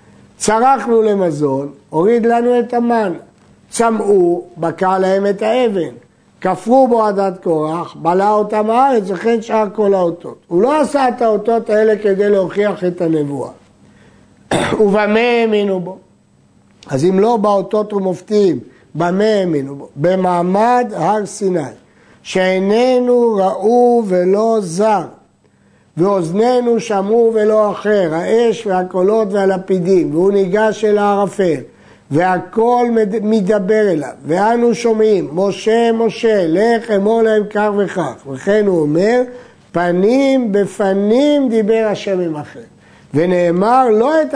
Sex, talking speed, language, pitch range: male, 110 wpm, Hebrew, 180-225 Hz